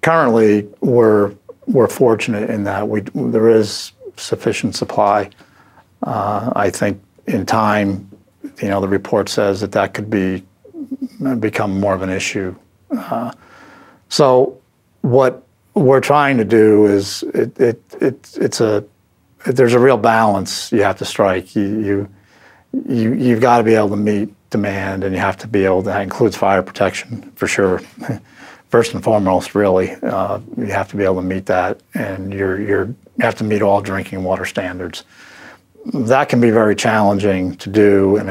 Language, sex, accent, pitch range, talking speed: English, male, American, 100-115 Hz, 165 wpm